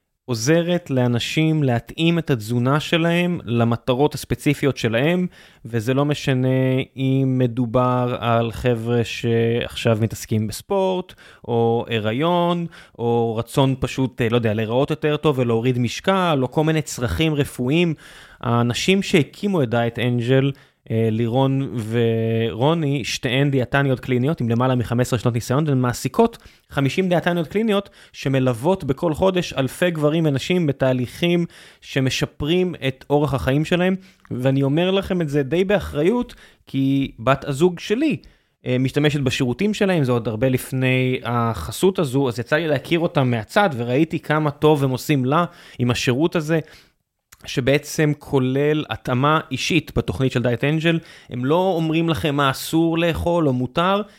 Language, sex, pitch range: Hebrew, male, 125-165 Hz